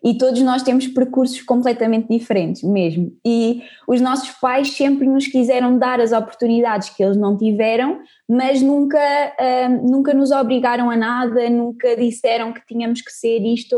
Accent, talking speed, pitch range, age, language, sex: Brazilian, 155 wpm, 205-255 Hz, 20-39, Portuguese, female